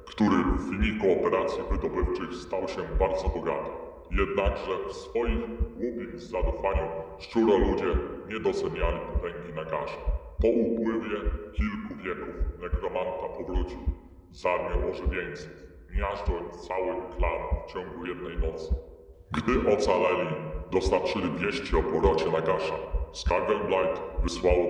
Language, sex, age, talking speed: Polish, female, 40-59, 105 wpm